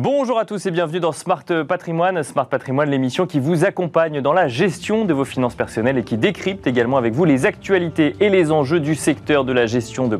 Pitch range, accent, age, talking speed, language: 125-170 Hz, French, 30-49, 225 wpm, French